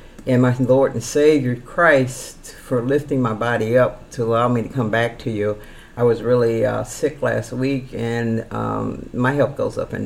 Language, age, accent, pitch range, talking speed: English, 50-69, American, 115-135 Hz, 195 wpm